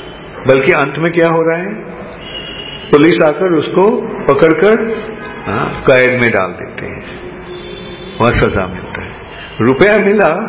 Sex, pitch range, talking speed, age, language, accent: male, 125-175 Hz, 125 wpm, 50-69, English, Indian